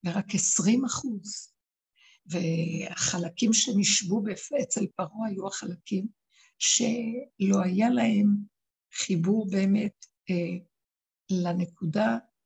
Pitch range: 180-215 Hz